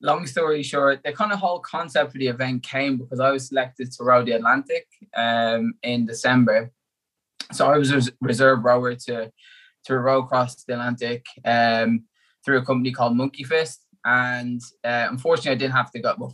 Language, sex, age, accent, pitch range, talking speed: English, male, 20-39, British, 120-135 Hz, 185 wpm